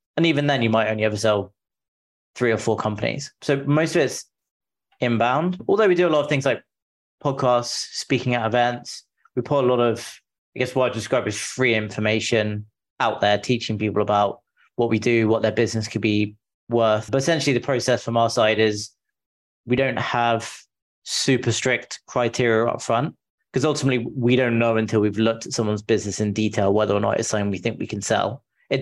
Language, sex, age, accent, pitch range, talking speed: English, male, 20-39, British, 105-125 Hz, 200 wpm